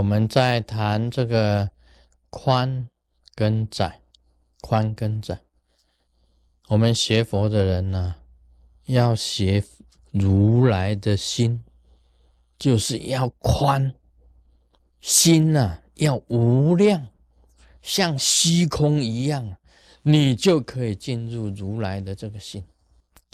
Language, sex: Chinese, male